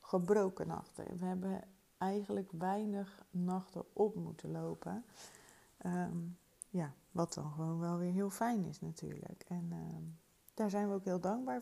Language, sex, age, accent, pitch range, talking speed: Dutch, female, 30-49, Dutch, 180-210 Hz, 140 wpm